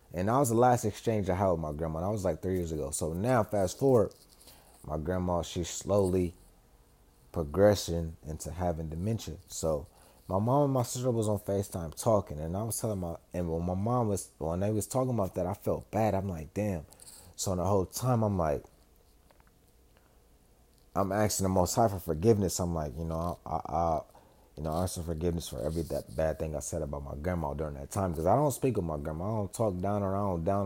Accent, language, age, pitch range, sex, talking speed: American, English, 30-49, 80-110 Hz, male, 225 wpm